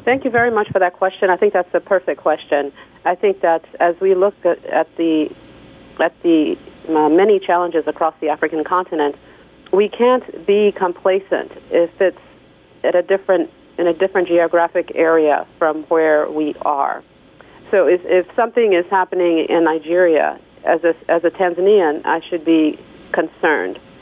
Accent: American